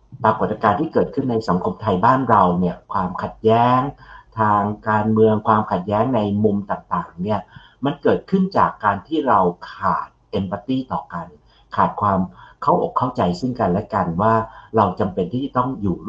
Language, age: English, 60-79